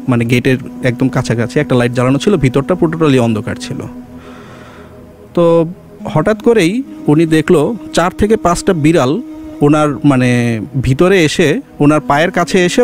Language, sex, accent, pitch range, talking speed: English, male, Indian, 140-220 Hz, 145 wpm